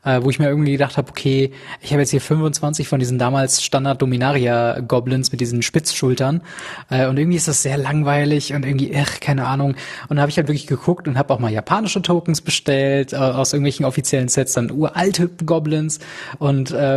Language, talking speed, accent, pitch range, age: German, 185 wpm, German, 135-155 Hz, 20-39